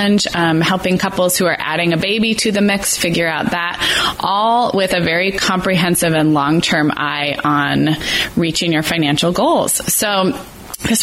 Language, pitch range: English, 170-210 Hz